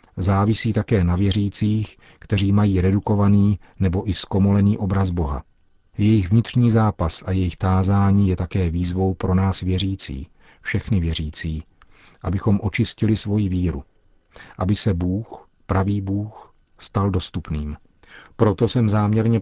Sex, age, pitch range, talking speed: male, 40-59, 90-110 Hz, 125 wpm